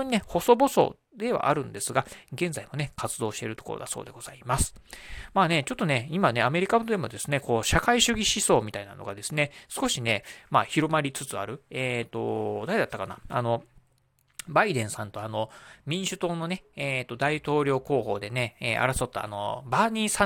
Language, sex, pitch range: Japanese, male, 115-155 Hz